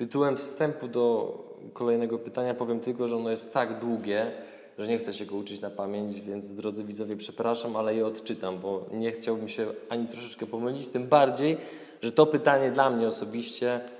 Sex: male